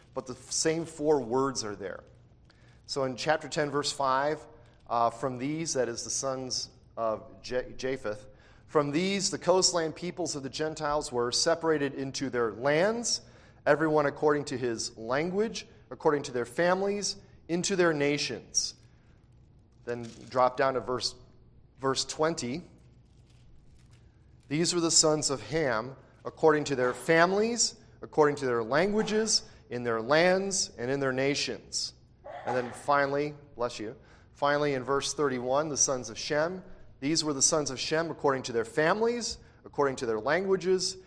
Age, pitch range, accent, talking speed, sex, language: 30-49, 120-155 Hz, American, 150 wpm, male, English